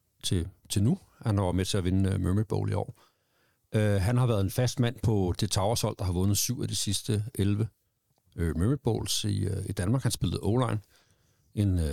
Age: 60-79